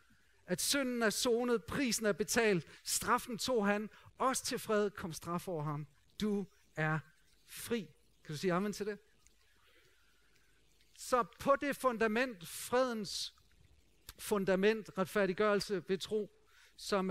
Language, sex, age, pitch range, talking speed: Danish, male, 50-69, 185-230 Hz, 125 wpm